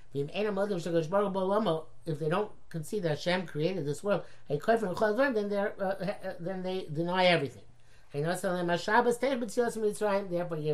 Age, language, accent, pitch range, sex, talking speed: 60-79, English, American, 145-210 Hz, male, 90 wpm